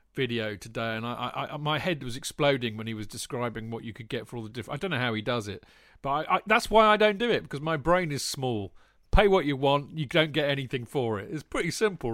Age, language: 40-59, English